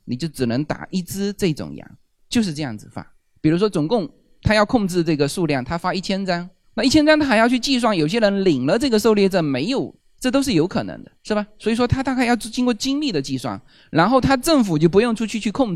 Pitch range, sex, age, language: 145-225 Hz, male, 20-39, Chinese